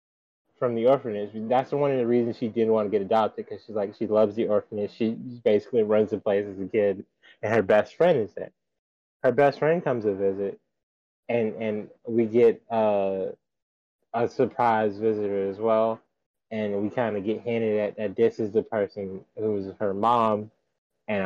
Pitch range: 105-120 Hz